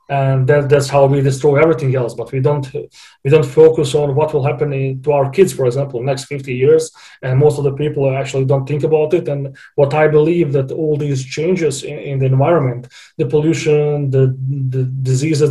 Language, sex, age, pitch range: English, male, 30-49, 135-150 Hz